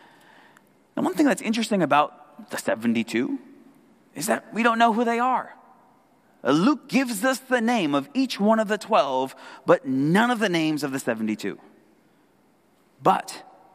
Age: 30-49